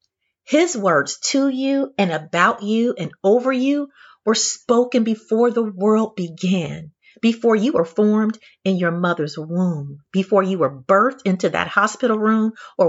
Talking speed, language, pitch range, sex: 155 wpm, English, 170-235 Hz, female